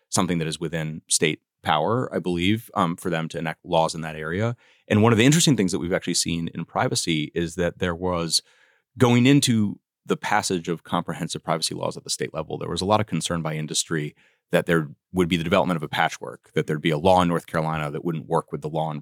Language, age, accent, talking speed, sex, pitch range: English, 30-49, American, 245 wpm, male, 80-100 Hz